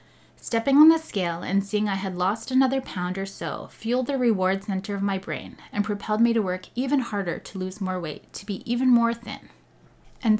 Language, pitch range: English, 185-230 Hz